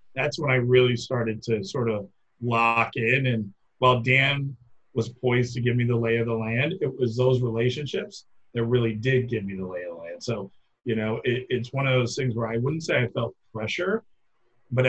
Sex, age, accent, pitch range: male, 40-59, American, 110-125 Hz